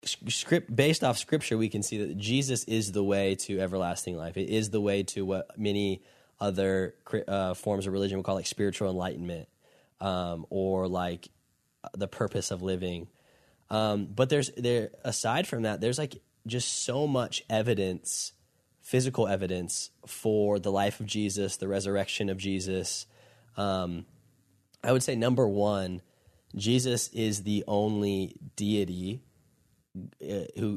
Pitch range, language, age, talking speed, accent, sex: 95-115 Hz, English, 10-29, 145 wpm, American, male